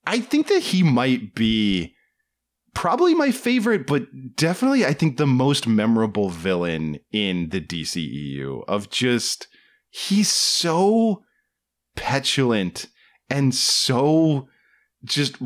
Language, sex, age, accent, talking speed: English, male, 30-49, American, 110 wpm